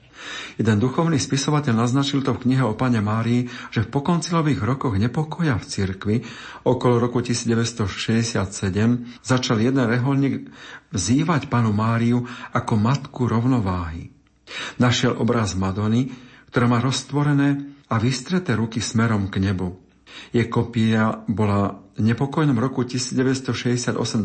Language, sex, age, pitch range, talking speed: Slovak, male, 50-69, 110-130 Hz, 120 wpm